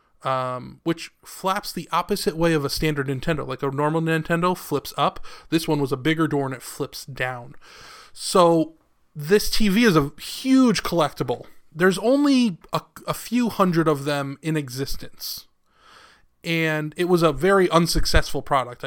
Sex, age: male, 20-39